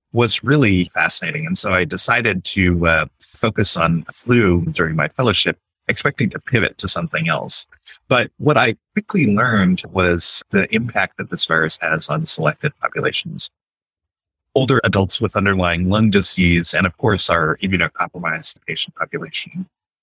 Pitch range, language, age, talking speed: 90-125 Hz, English, 30-49, 150 wpm